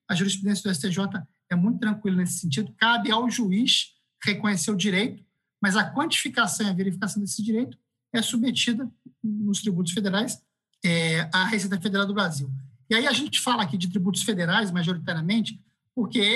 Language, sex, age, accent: Portuguese, male, 50-69, Brazilian